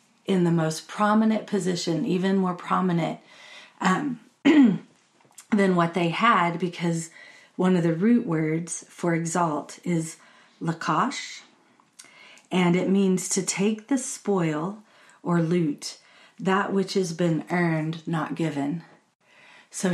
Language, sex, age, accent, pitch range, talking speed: English, female, 40-59, American, 165-195 Hz, 120 wpm